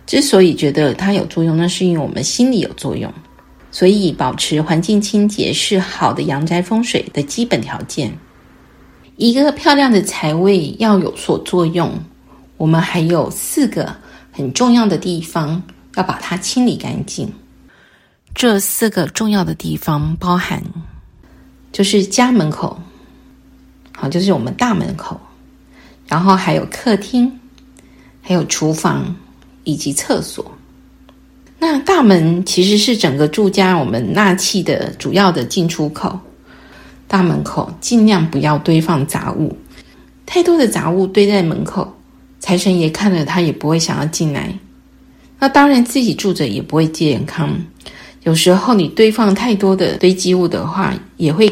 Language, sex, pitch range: Chinese, female, 155-200 Hz